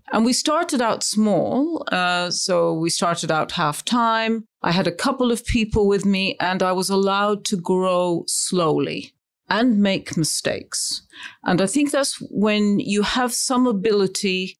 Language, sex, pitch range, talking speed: English, female, 180-235 Hz, 160 wpm